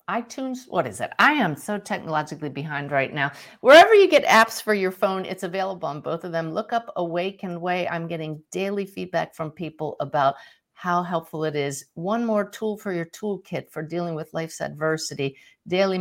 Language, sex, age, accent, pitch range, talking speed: English, female, 50-69, American, 155-205 Hz, 190 wpm